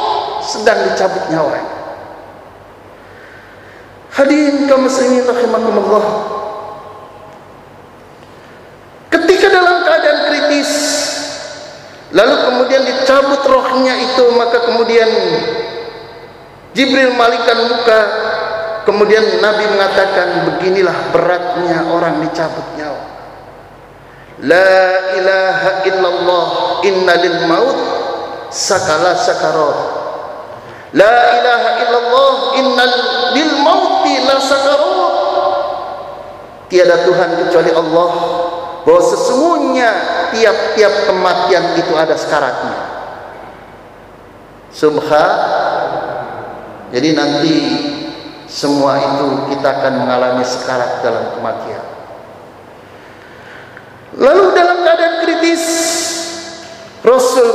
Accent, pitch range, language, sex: native, 175-290 Hz, Indonesian, male